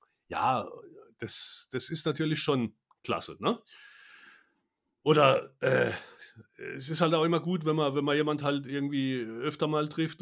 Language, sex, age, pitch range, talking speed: German, male, 30-49, 115-135 Hz, 155 wpm